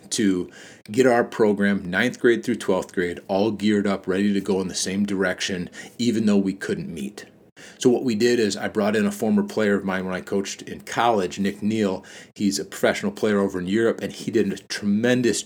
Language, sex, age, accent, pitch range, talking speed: English, male, 40-59, American, 95-110 Hz, 215 wpm